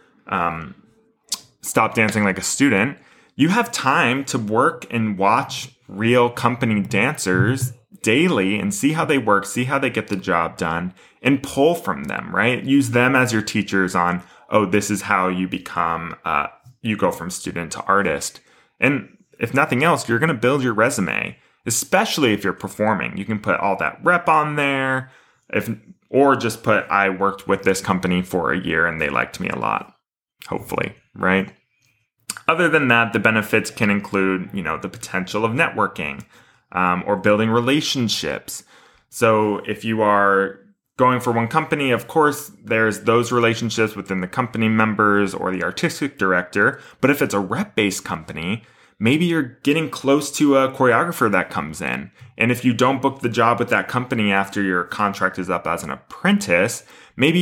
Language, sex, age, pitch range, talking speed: English, male, 20-39, 100-135 Hz, 175 wpm